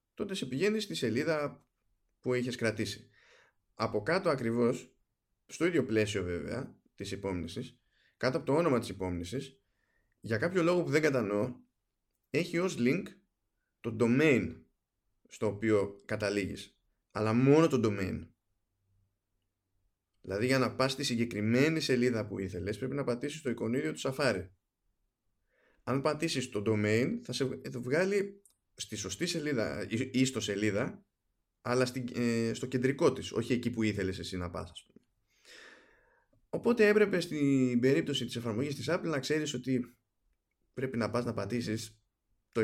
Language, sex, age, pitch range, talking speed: Greek, male, 20-39, 100-135 Hz, 140 wpm